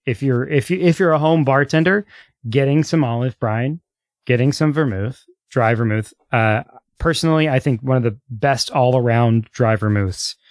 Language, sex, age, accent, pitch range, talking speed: English, male, 30-49, American, 115-140 Hz, 170 wpm